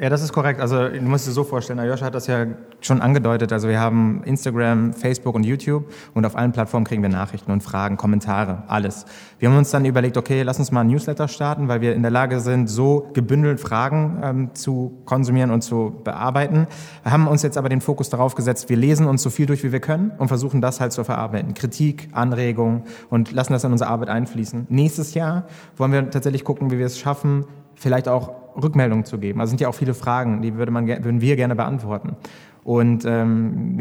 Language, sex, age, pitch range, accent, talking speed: German, male, 30-49, 115-135 Hz, German, 220 wpm